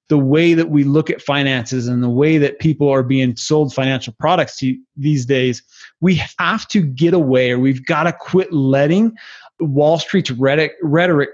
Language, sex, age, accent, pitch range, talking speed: English, male, 30-49, American, 140-185 Hz, 175 wpm